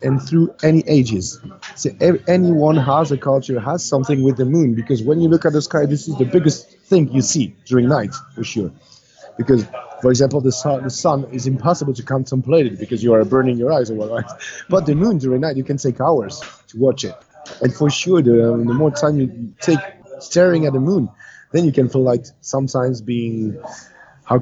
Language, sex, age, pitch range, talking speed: English, male, 30-49, 120-155 Hz, 210 wpm